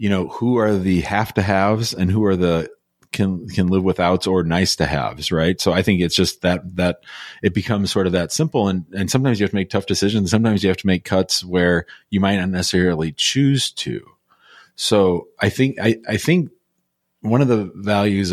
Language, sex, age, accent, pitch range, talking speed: English, male, 40-59, American, 90-100 Hz, 215 wpm